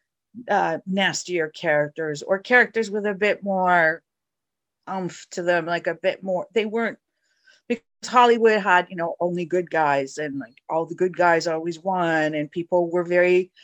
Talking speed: 165 wpm